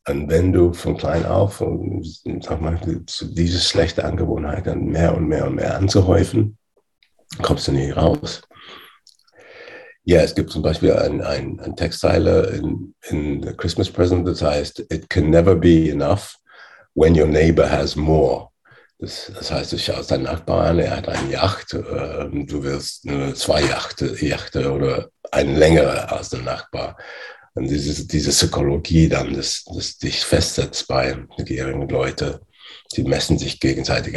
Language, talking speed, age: English, 155 wpm, 60-79